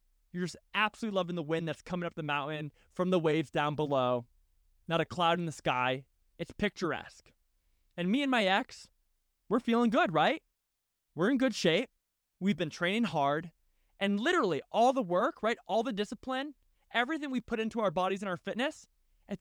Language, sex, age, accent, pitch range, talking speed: English, male, 20-39, American, 130-220 Hz, 185 wpm